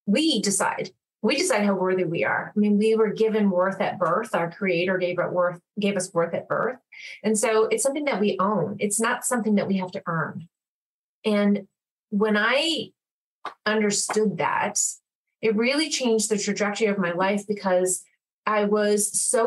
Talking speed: 180 wpm